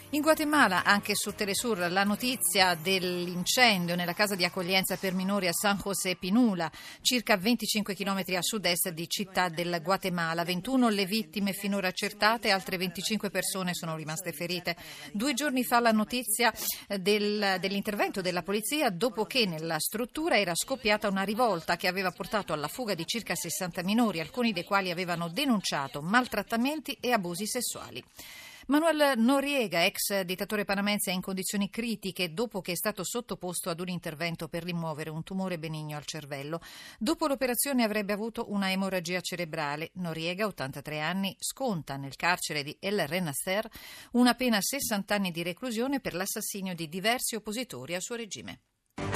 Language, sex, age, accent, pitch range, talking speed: Italian, female, 40-59, native, 175-220 Hz, 155 wpm